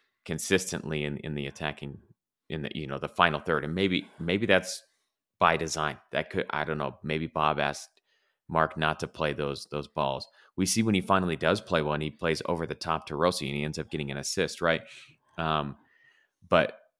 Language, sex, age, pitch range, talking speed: English, male, 30-49, 75-85 Hz, 205 wpm